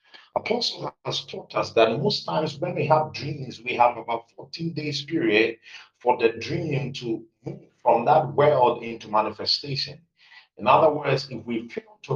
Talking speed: 170 wpm